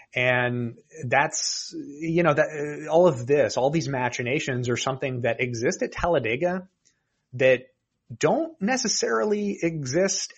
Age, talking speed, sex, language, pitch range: 30-49, 125 wpm, male, English, 120-165 Hz